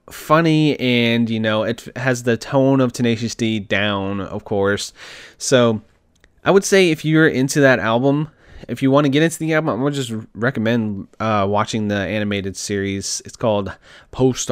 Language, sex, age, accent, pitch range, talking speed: English, male, 20-39, American, 105-140 Hz, 180 wpm